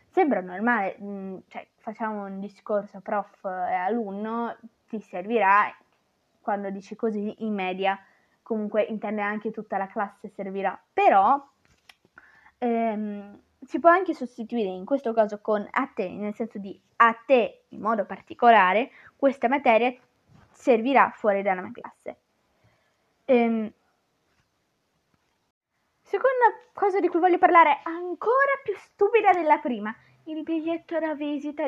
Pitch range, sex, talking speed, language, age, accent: 205-285 Hz, female, 125 wpm, Italian, 20-39, native